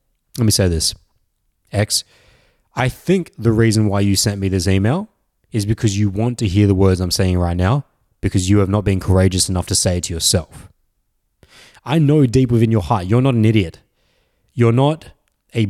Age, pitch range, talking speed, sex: 20-39, 95-120 Hz, 200 wpm, male